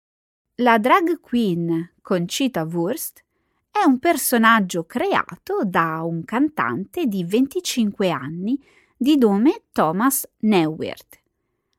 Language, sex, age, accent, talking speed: Italian, female, 30-49, native, 95 wpm